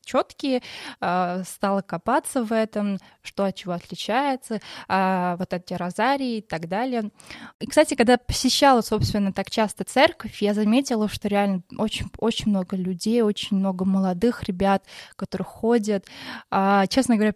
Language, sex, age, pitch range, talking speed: Russian, female, 20-39, 190-230 Hz, 130 wpm